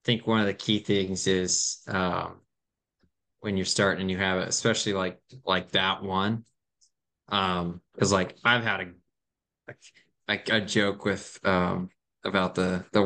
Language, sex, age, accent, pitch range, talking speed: English, male, 20-39, American, 95-115 Hz, 165 wpm